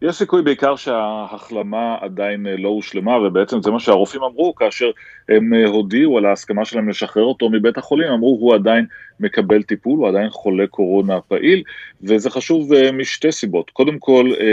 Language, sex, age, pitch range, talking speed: Hebrew, male, 30-49, 100-130 Hz, 160 wpm